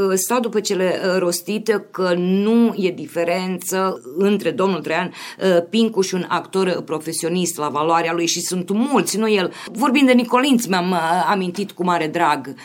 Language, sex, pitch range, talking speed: Romanian, female, 165-210 Hz, 150 wpm